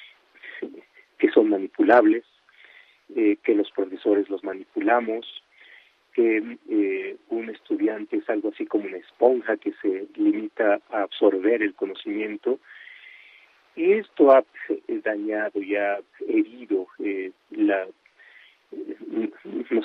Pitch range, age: 310-370 Hz, 40-59